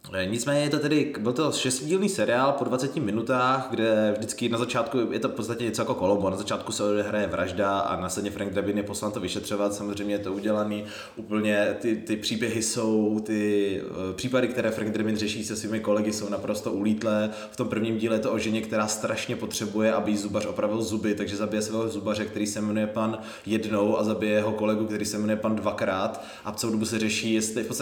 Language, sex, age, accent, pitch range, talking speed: Czech, male, 20-39, native, 105-125 Hz, 205 wpm